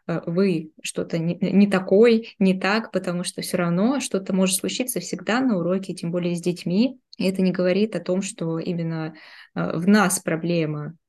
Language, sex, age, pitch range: Russian, female, 20-39, 175-205 Hz